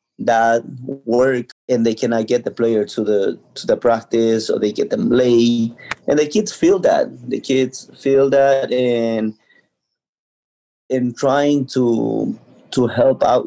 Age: 30-49